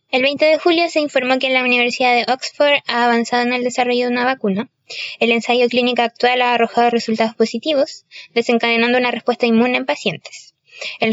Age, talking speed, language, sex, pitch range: 10-29, 185 wpm, Spanish, female, 230-275 Hz